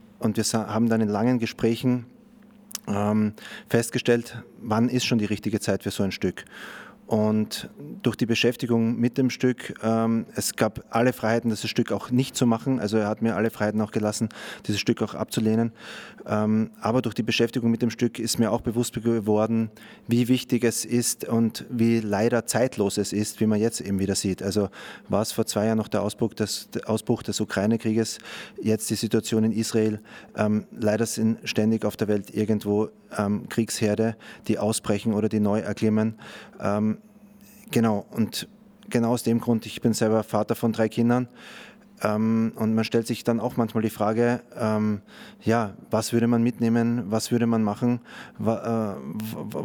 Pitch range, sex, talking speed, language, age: 110-120 Hz, male, 180 wpm, German, 30-49